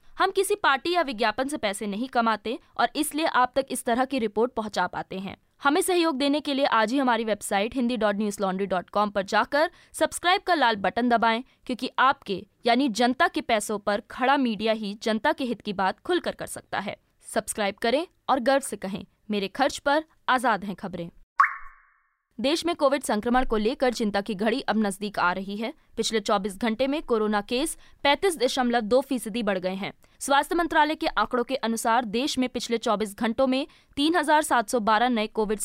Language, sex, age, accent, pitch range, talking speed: Hindi, female, 20-39, native, 215-280 Hz, 185 wpm